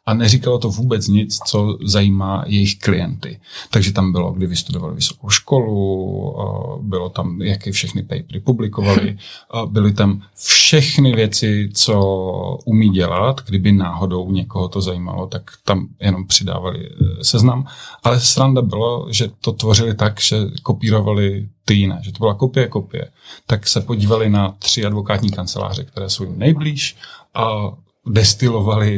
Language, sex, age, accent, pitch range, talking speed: Czech, male, 30-49, native, 100-120 Hz, 140 wpm